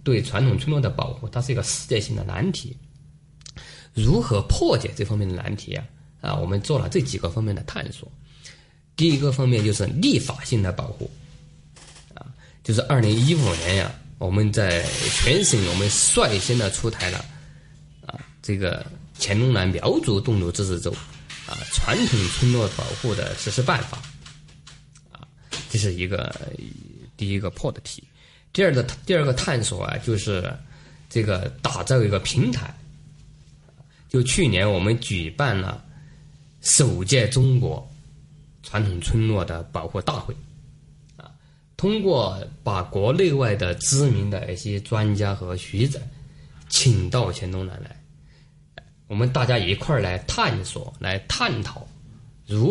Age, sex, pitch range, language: 20-39, male, 105-145 Hz, Chinese